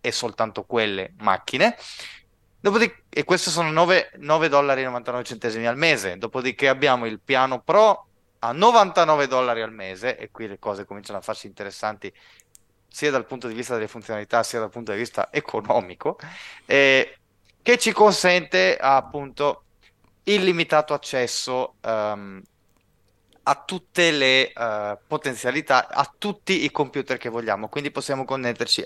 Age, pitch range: 20-39, 110-145 Hz